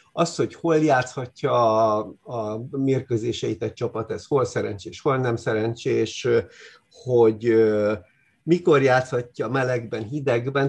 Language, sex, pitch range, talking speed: English, male, 110-145 Hz, 105 wpm